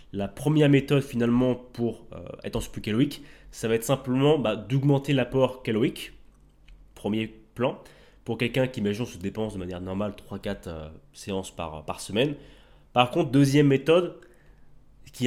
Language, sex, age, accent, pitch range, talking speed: French, male, 20-39, French, 105-140 Hz, 165 wpm